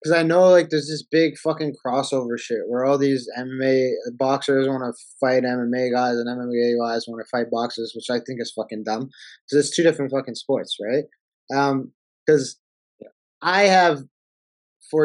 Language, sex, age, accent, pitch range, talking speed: English, male, 20-39, American, 125-150 Hz, 185 wpm